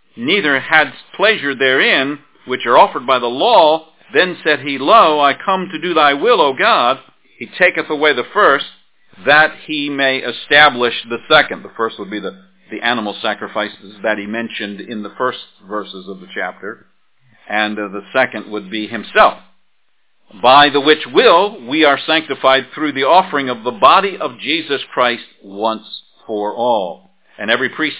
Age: 50-69